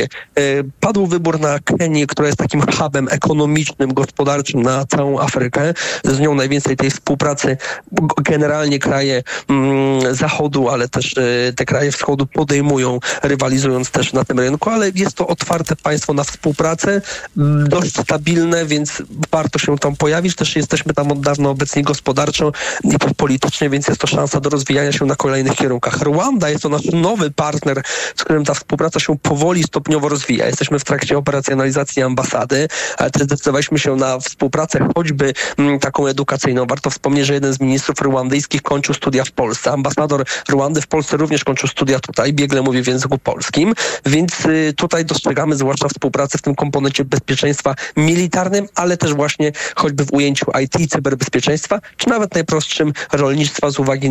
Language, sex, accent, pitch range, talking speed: Polish, male, native, 140-155 Hz, 160 wpm